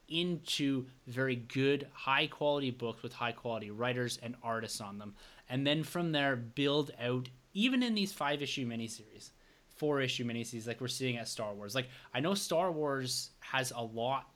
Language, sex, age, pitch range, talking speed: English, male, 20-39, 115-140 Hz, 180 wpm